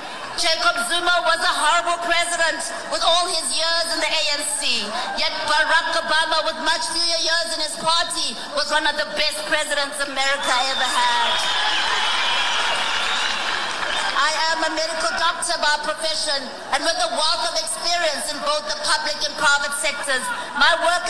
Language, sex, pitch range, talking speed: English, female, 300-340 Hz, 155 wpm